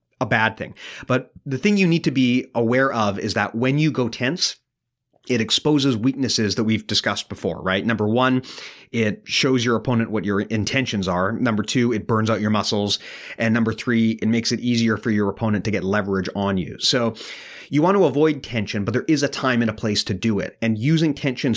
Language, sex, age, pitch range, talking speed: English, male, 30-49, 105-130 Hz, 215 wpm